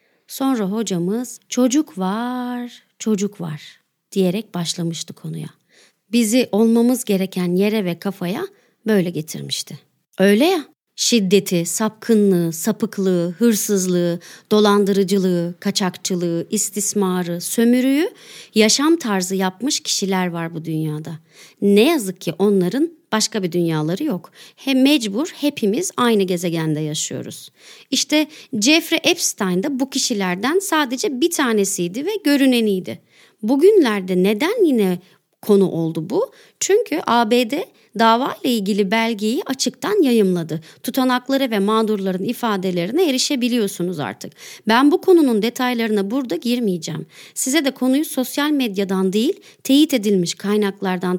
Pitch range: 185-260 Hz